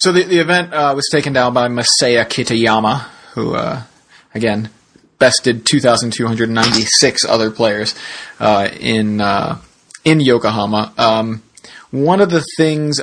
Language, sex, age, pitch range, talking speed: English, male, 30-49, 110-130 Hz, 130 wpm